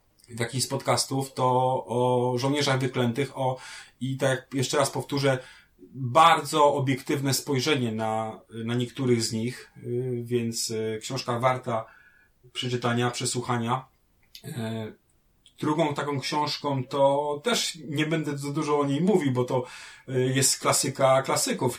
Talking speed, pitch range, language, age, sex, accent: 120 wpm, 120-145 Hz, Polish, 30-49, male, native